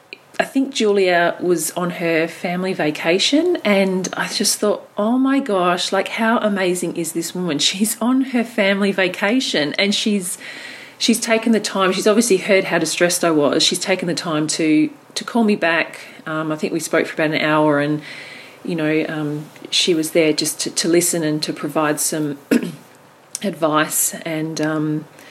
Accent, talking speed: Australian, 180 wpm